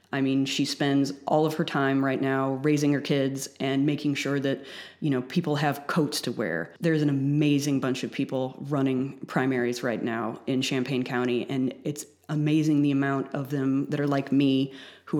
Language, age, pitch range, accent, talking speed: English, 30-49, 140-180 Hz, American, 195 wpm